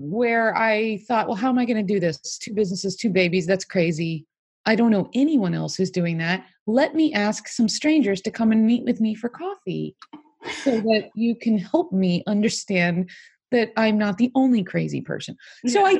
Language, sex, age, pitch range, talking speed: English, female, 30-49, 215-280 Hz, 205 wpm